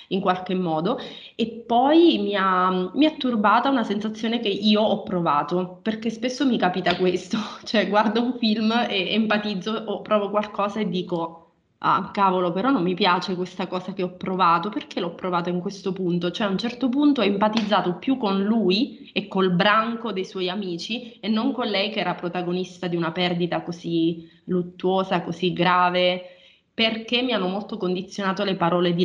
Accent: native